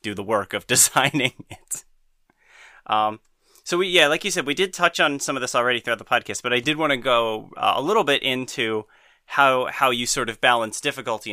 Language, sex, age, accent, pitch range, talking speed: English, male, 30-49, American, 110-145 Hz, 225 wpm